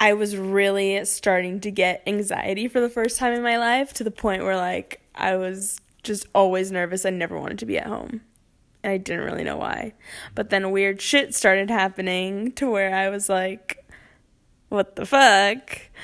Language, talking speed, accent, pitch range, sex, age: English, 190 wpm, American, 190-220 Hz, female, 10-29